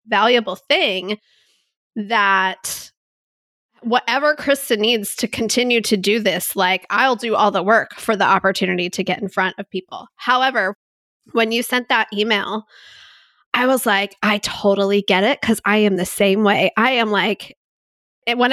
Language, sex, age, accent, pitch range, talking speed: English, female, 20-39, American, 200-250 Hz, 160 wpm